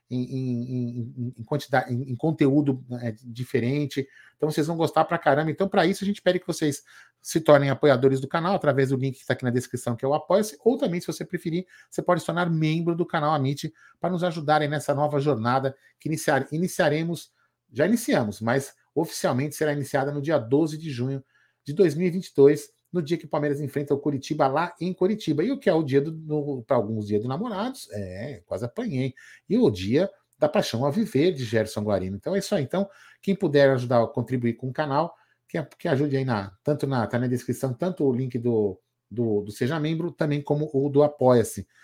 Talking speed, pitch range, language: 215 wpm, 125-165 Hz, Portuguese